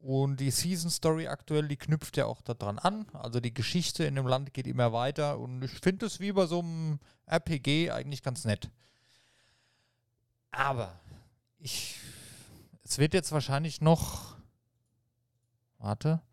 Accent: German